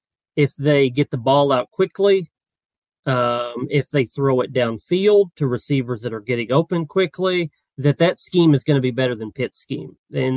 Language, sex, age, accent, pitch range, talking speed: English, male, 40-59, American, 130-155 Hz, 185 wpm